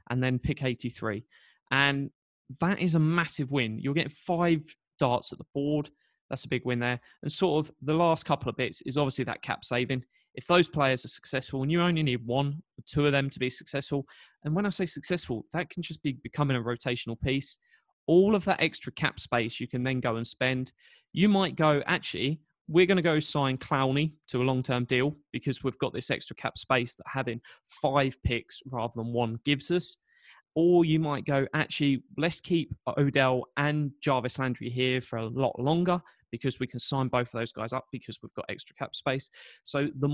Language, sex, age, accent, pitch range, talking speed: English, male, 20-39, British, 125-155 Hz, 210 wpm